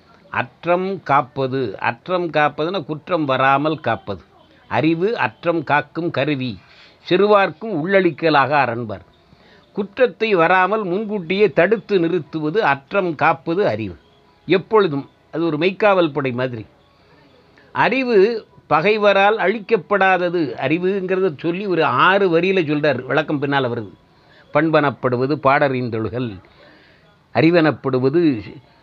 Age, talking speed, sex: 60-79, 90 wpm, male